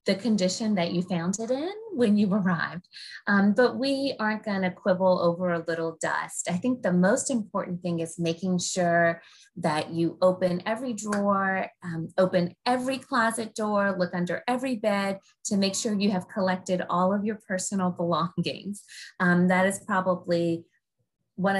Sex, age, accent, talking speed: female, 20-39, American, 165 wpm